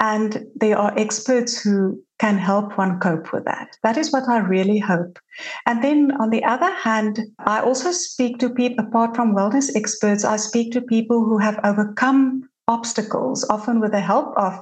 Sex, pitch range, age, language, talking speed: female, 195-240 Hz, 60-79, English, 185 wpm